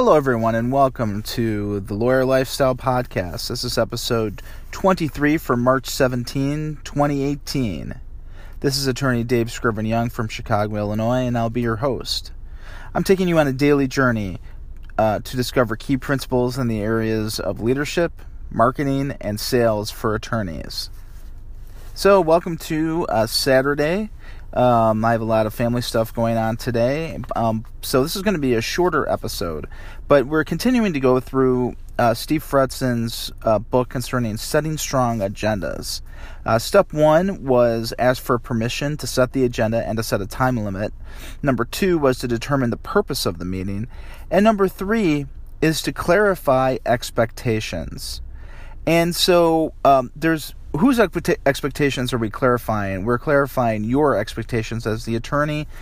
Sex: male